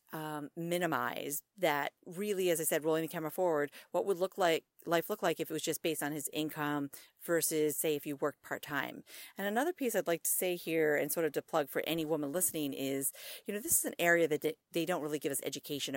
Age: 40-59